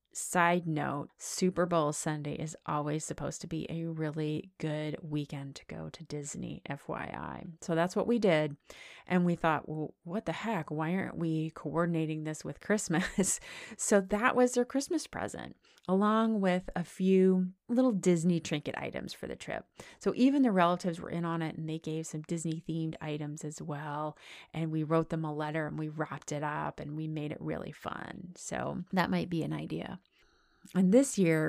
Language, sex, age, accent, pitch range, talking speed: English, female, 30-49, American, 155-185 Hz, 185 wpm